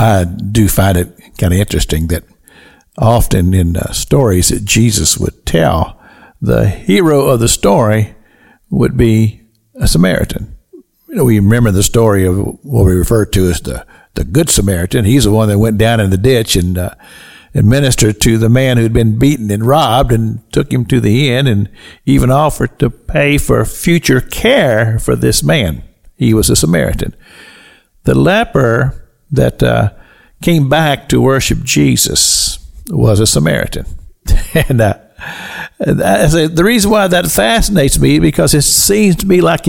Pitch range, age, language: 100-160 Hz, 60-79, English